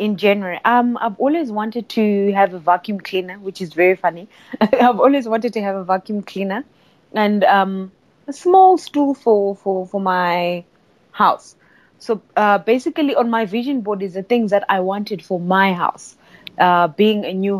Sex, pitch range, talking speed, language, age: female, 185-235 Hz, 180 wpm, English, 20-39